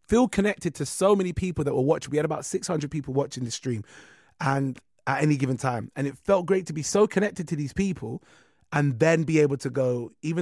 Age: 30-49